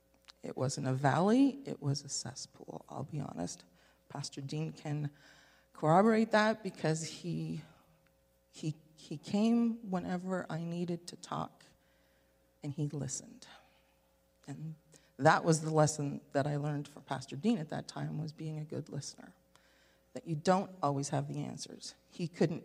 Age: 40-59